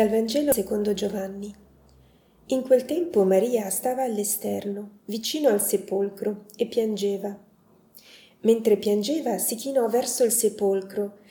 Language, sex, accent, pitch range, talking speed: Italian, female, native, 200-235 Hz, 115 wpm